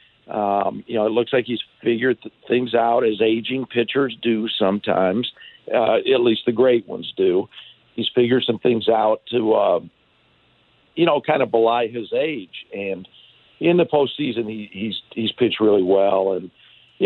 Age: 50-69